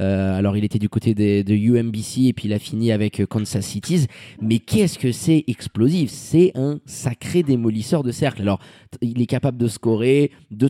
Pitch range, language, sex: 110-140 Hz, French, male